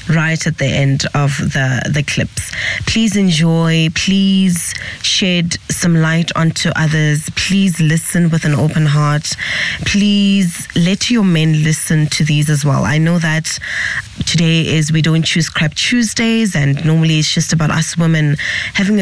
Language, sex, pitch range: English, female, 150-170 Hz